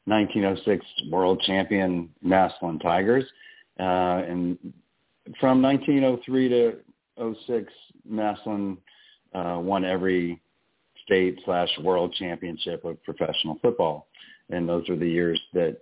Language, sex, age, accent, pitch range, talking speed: English, male, 50-69, American, 85-100 Hz, 105 wpm